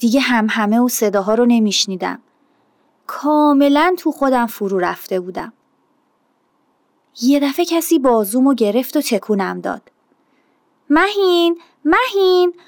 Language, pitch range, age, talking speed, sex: Persian, 220-315 Hz, 30-49, 110 wpm, female